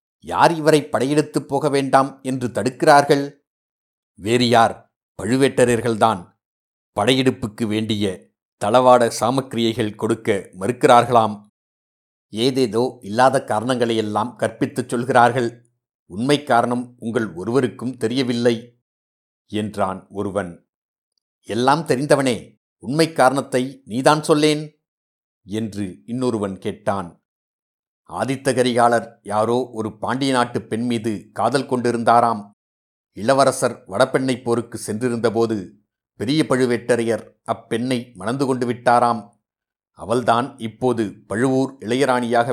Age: 60-79